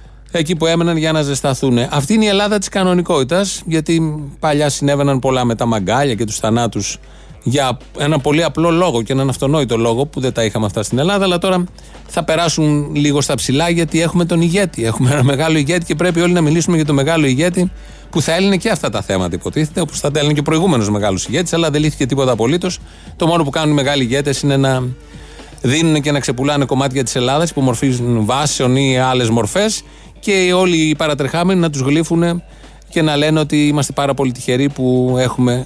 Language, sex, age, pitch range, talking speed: Greek, male, 30-49, 125-160 Hz, 200 wpm